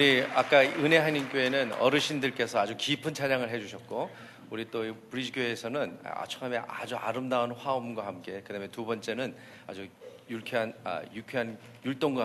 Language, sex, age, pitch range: Korean, male, 40-59, 115-140 Hz